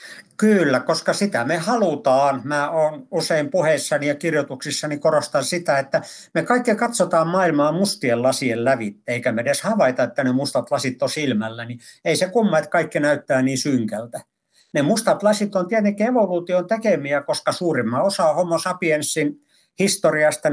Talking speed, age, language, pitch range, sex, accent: 155 wpm, 60-79, Finnish, 130-170 Hz, male, native